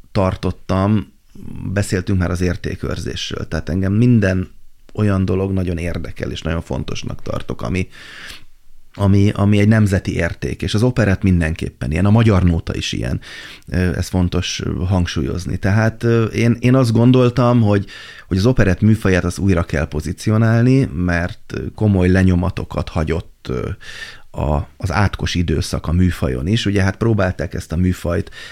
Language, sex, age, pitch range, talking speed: Hungarian, male, 30-49, 85-100 Hz, 135 wpm